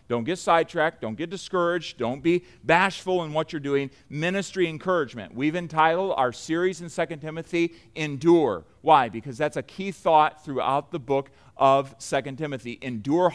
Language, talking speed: English, 160 wpm